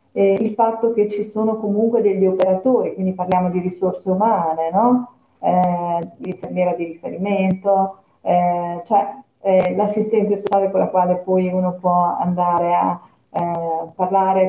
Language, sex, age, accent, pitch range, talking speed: Italian, female, 40-59, native, 175-200 Hz, 140 wpm